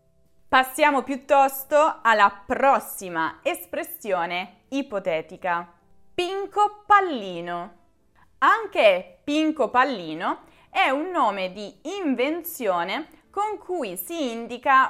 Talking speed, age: 80 wpm, 20-39